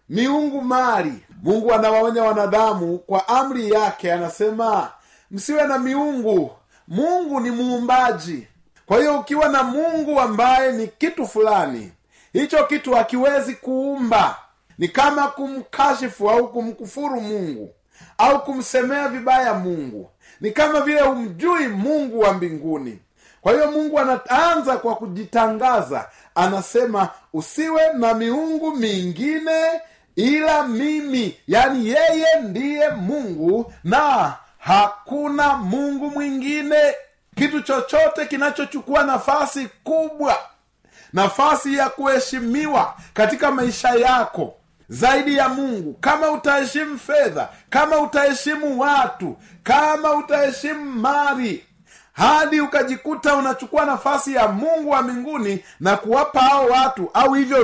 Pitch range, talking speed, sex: 230-290 Hz, 105 wpm, male